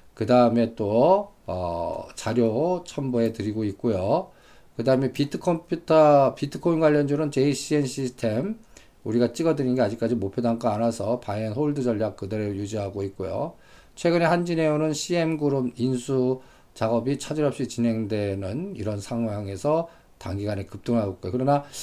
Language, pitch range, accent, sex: Korean, 110-150 Hz, native, male